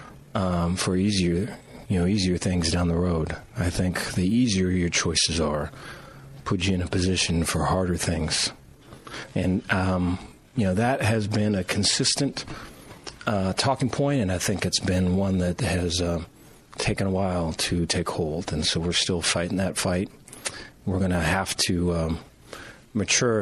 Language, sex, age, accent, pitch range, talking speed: English, male, 40-59, American, 85-100 Hz, 170 wpm